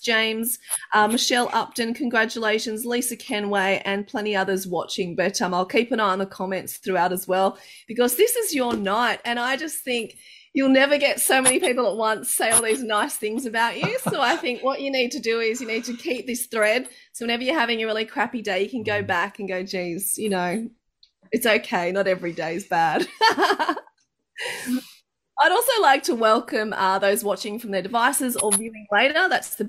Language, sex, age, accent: English, female, 30-49, Australian